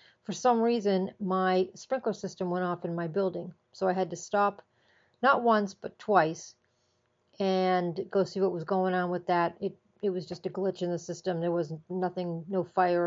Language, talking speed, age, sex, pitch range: English, 195 wpm, 40-59, female, 175-210 Hz